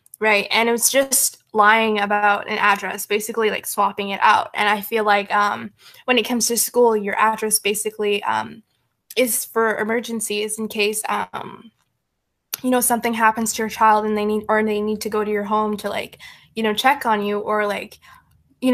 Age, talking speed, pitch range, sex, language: 10-29, 200 wpm, 210-230 Hz, female, English